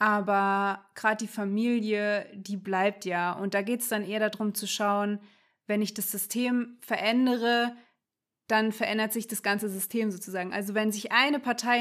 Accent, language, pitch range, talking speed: German, German, 205-230 Hz, 170 wpm